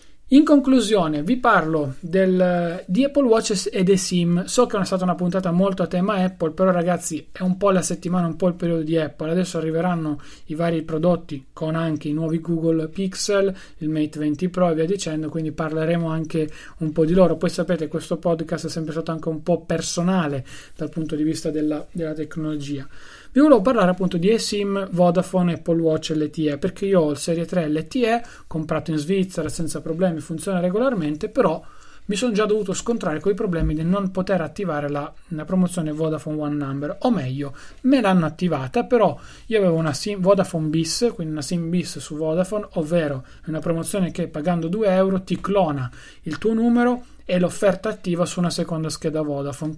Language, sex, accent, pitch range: Italian, male, native, 155-190 Hz